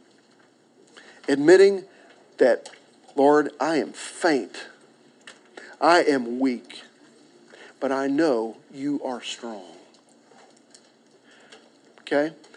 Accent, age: American, 50-69